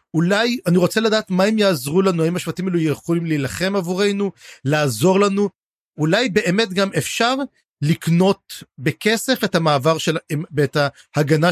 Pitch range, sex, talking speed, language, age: 160-210 Hz, male, 140 wpm, Hebrew, 40-59